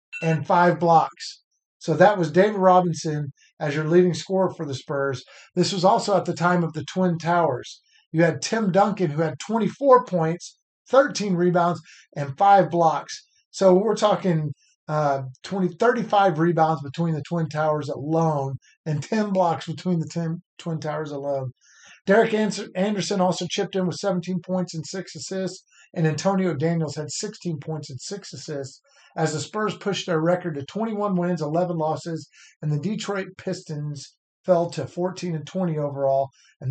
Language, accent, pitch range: English, American, 155-190 Hz